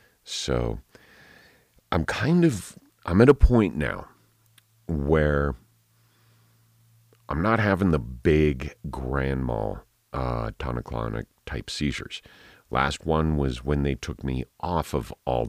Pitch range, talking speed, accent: 65-85 Hz, 115 wpm, American